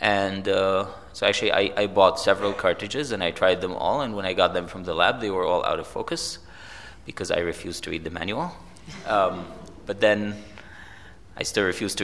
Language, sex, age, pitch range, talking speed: English, male, 20-39, 95-115 Hz, 210 wpm